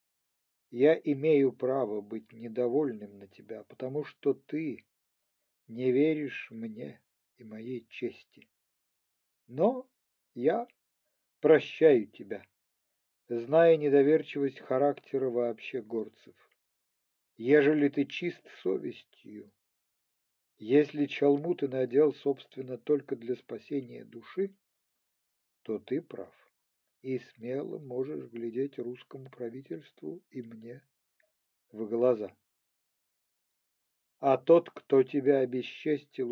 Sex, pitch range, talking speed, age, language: male, 115-145 Hz, 95 wpm, 50-69, Ukrainian